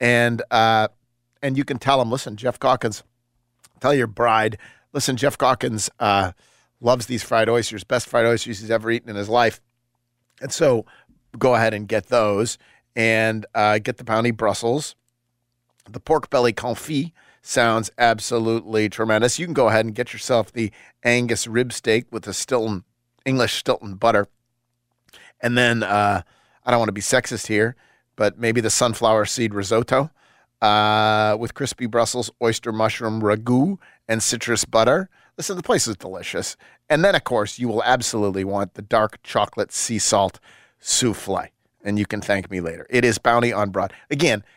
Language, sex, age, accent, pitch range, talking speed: English, male, 40-59, American, 110-125 Hz, 165 wpm